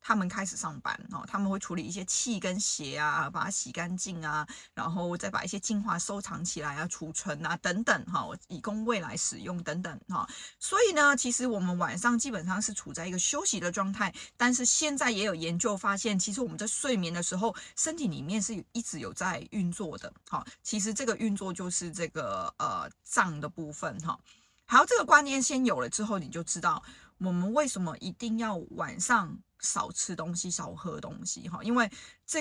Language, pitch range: Chinese, 175-230 Hz